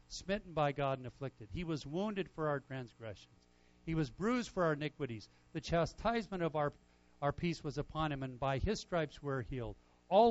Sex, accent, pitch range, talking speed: male, American, 120-185 Hz, 190 wpm